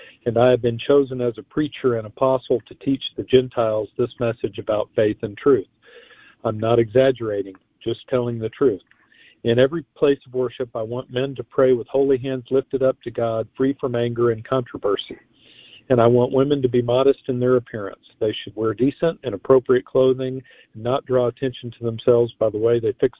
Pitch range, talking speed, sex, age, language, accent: 115-130 Hz, 200 wpm, male, 50-69, English, American